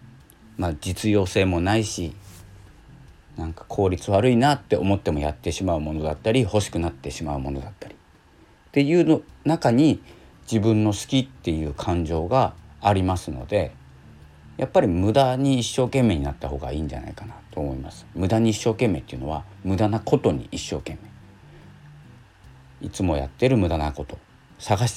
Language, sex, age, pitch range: Japanese, male, 40-59, 80-115 Hz